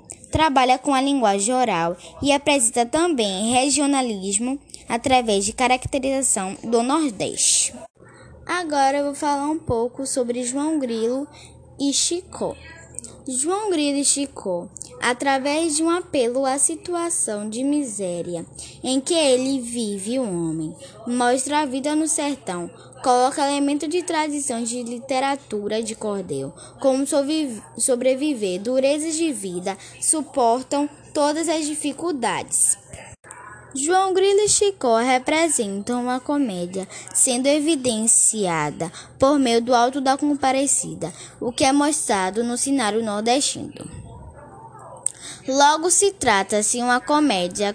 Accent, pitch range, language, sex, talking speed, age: Brazilian, 225-290 Hz, Portuguese, female, 115 wpm, 10-29